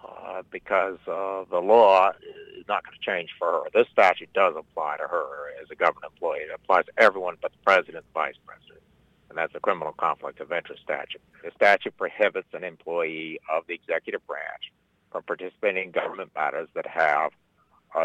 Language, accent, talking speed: English, American, 195 wpm